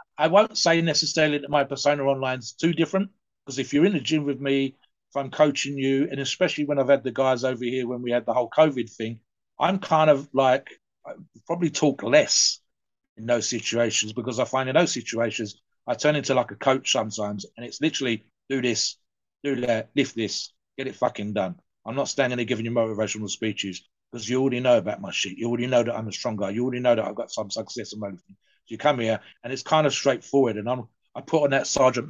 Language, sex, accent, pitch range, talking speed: English, male, British, 120-150 Hz, 230 wpm